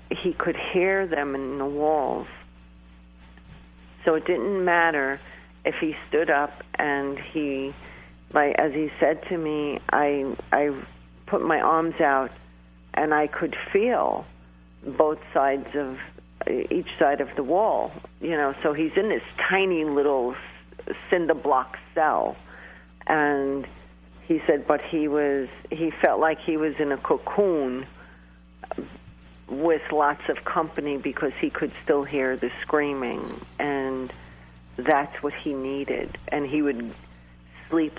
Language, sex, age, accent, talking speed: English, female, 50-69, American, 135 wpm